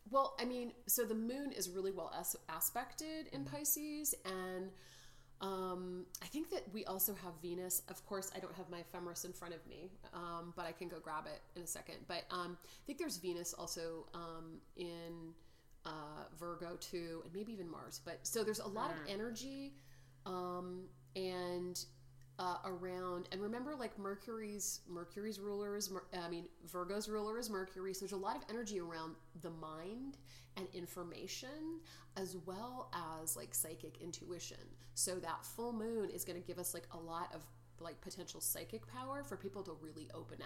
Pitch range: 165-195 Hz